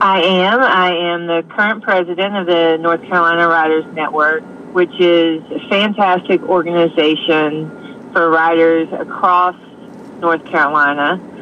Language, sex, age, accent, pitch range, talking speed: English, female, 40-59, American, 155-185 Hz, 120 wpm